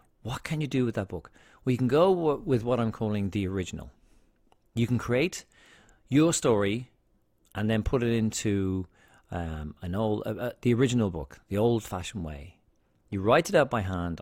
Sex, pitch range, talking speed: male, 85-115 Hz, 180 wpm